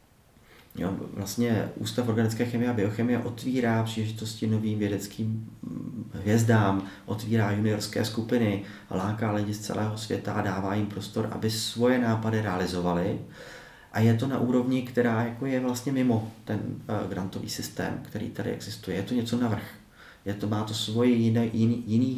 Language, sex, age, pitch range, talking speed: Czech, male, 30-49, 100-120 Hz, 145 wpm